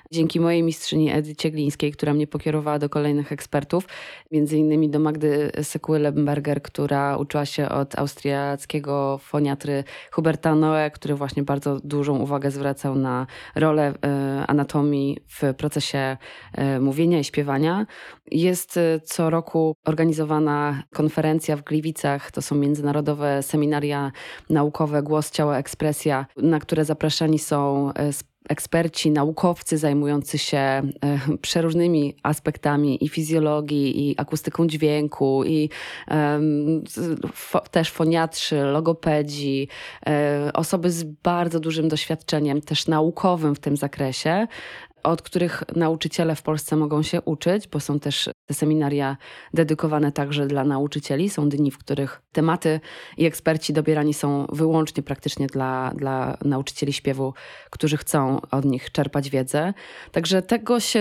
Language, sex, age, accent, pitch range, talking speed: Polish, female, 20-39, native, 145-160 Hz, 125 wpm